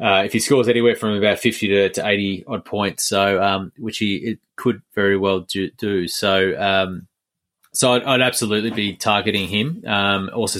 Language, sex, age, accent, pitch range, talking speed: English, male, 20-39, Australian, 95-105 Hz, 195 wpm